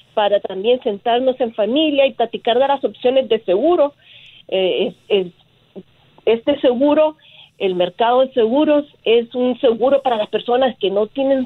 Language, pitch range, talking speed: Spanish, 195-260 Hz, 140 wpm